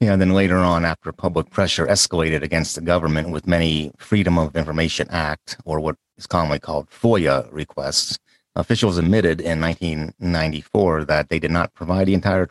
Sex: male